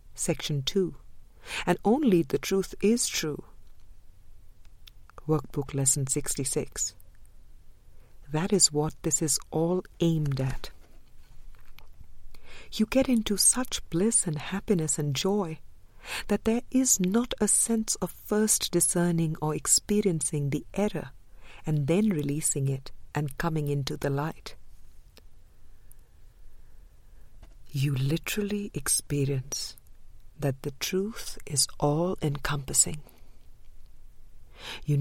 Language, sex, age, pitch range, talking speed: English, female, 50-69, 130-195 Hz, 105 wpm